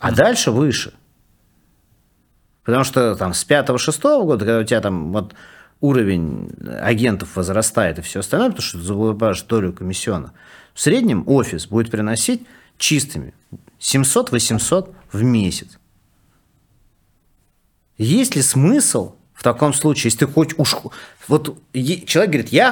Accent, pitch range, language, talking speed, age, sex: native, 110-150 Hz, Russian, 130 wpm, 40-59, male